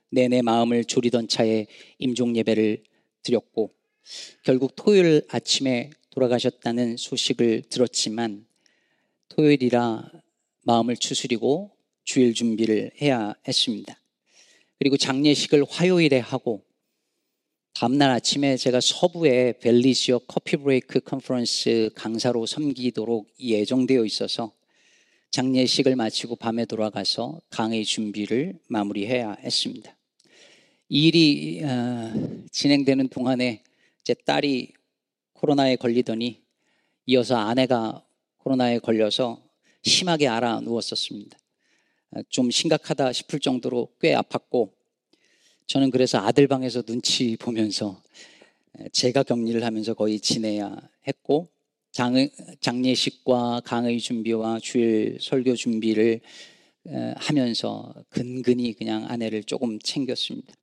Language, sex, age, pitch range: Korean, male, 40-59, 115-135 Hz